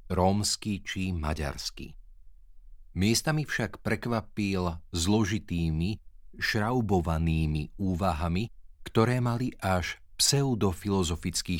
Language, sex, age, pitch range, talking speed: Slovak, male, 40-59, 80-105 Hz, 65 wpm